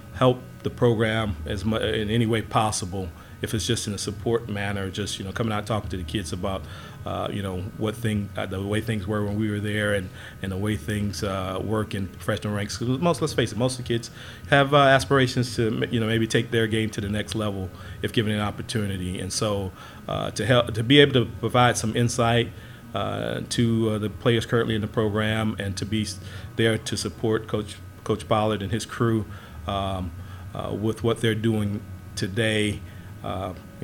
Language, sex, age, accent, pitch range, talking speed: English, male, 40-59, American, 100-115 Hz, 210 wpm